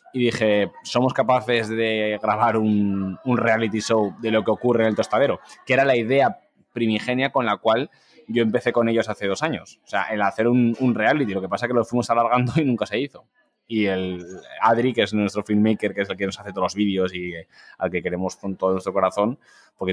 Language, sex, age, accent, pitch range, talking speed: Spanish, male, 20-39, Spanish, 105-125 Hz, 230 wpm